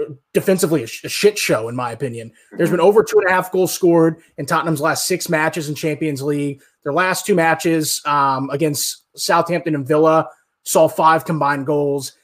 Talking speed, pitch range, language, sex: 190 wpm, 145-170 Hz, English, male